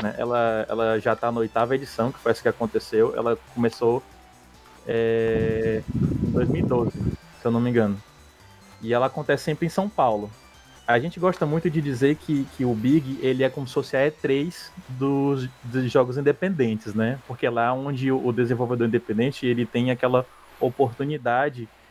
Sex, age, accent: male, 20-39, Brazilian